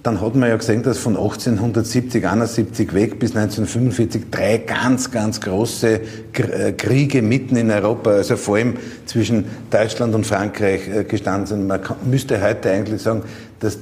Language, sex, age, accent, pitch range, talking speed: German, male, 50-69, Austrian, 105-120 Hz, 150 wpm